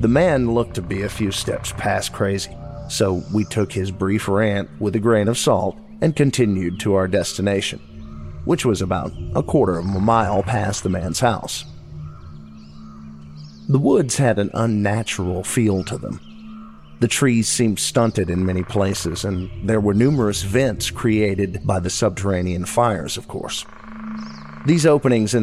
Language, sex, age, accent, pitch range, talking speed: English, male, 40-59, American, 90-120 Hz, 160 wpm